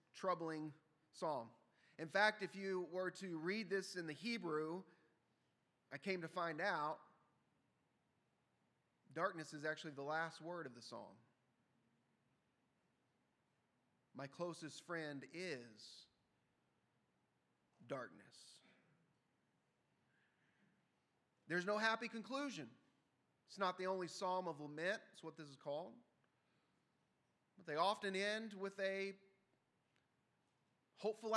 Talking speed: 105 wpm